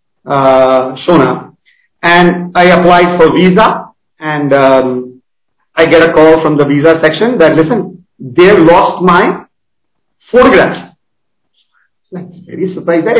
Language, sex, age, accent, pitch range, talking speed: Hindi, male, 50-69, native, 160-210 Hz, 125 wpm